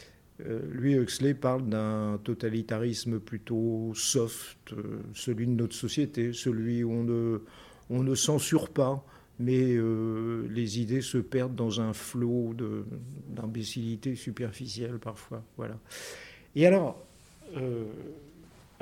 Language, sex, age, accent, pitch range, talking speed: French, male, 50-69, French, 115-140 Hz, 110 wpm